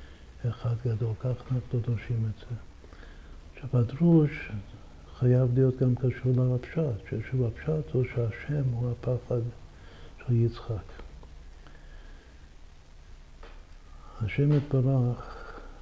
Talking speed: 85 wpm